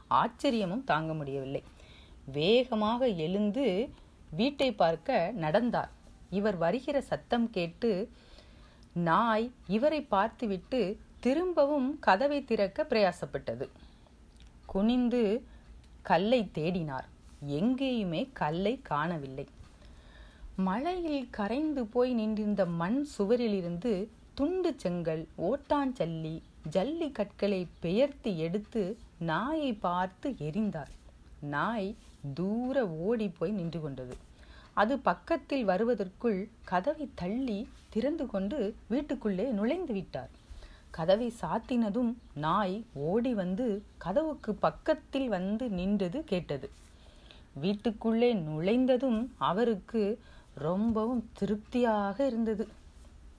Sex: female